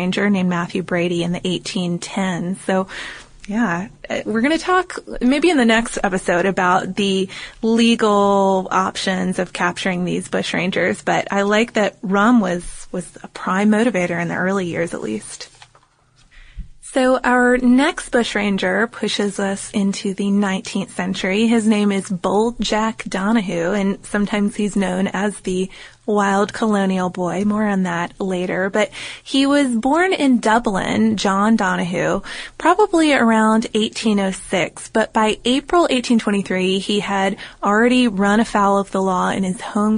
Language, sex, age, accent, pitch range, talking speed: English, female, 20-39, American, 190-220 Hz, 145 wpm